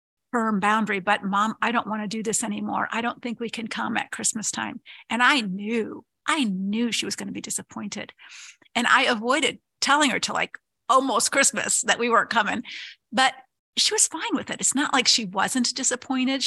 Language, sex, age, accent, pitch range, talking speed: English, female, 50-69, American, 215-255 Hz, 205 wpm